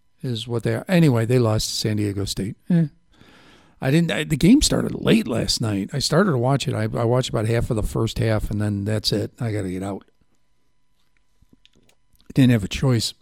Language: English